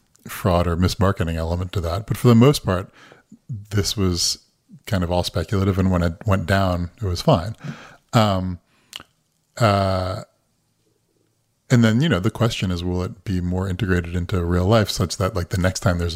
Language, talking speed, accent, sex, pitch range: English, 180 wpm, American, male, 90-115 Hz